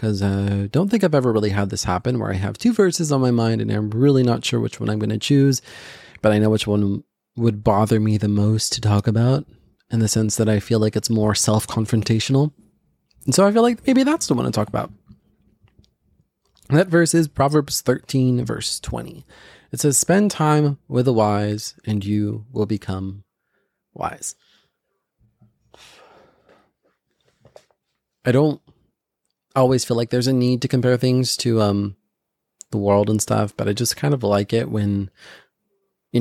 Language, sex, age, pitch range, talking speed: English, male, 30-49, 105-125 Hz, 185 wpm